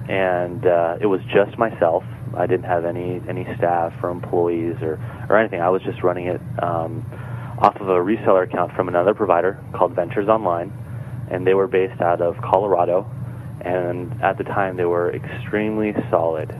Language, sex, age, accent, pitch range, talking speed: English, male, 30-49, American, 90-120 Hz, 175 wpm